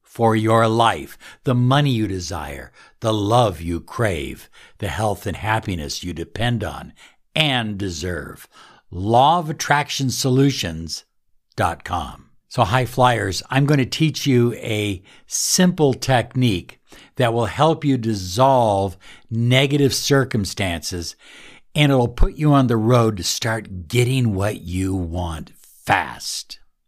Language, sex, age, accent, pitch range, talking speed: English, male, 60-79, American, 100-130 Hz, 125 wpm